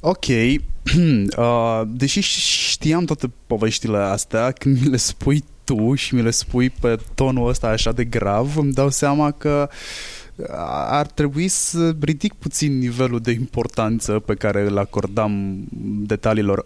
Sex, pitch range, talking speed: male, 105-135 Hz, 135 wpm